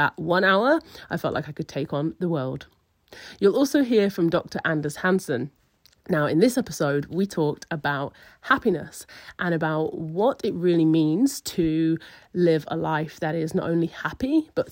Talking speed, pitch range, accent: 170 wpm, 155-205 Hz, British